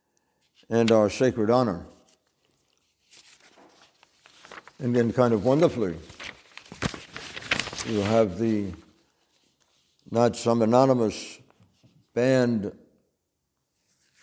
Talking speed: 65 wpm